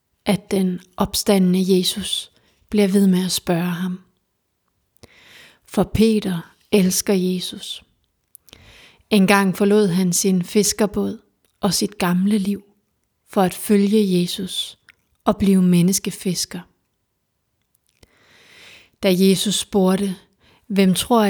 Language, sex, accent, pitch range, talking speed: Danish, female, native, 185-210 Hz, 100 wpm